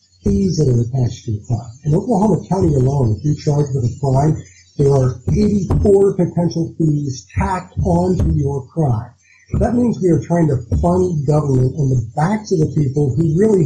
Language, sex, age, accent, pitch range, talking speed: English, male, 50-69, American, 125-170 Hz, 185 wpm